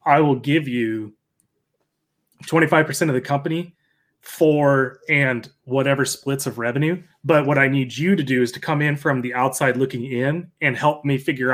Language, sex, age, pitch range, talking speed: English, male, 30-49, 125-150 Hz, 180 wpm